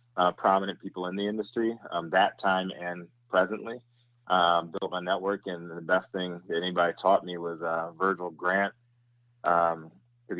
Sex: male